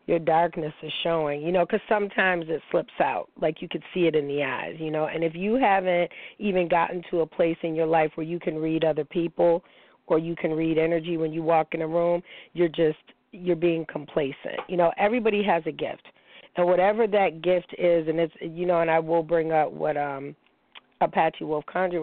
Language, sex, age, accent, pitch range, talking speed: English, female, 40-59, American, 155-180 Hz, 220 wpm